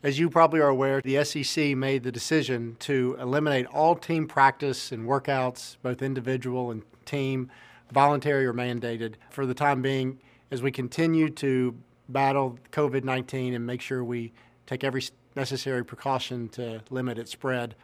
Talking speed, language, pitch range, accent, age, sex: 155 wpm, English, 125-140 Hz, American, 50-69, male